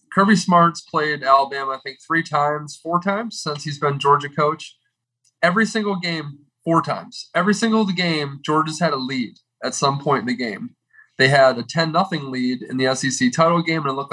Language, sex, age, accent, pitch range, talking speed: English, male, 20-39, American, 125-165 Hz, 200 wpm